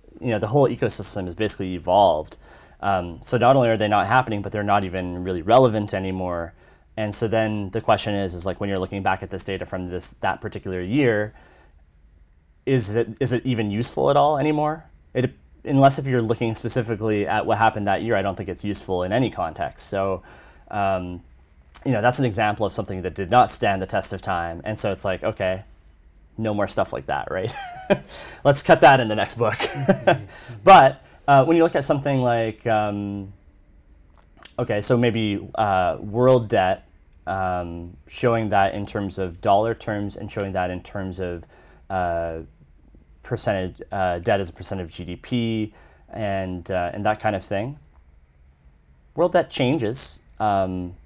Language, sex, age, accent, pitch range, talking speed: English, male, 30-49, American, 90-115 Hz, 180 wpm